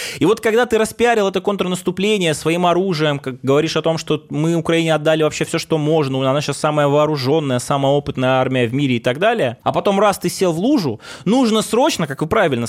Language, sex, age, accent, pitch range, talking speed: Russian, male, 20-39, native, 150-205 Hz, 210 wpm